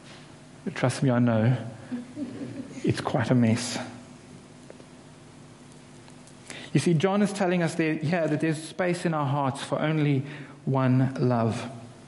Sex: male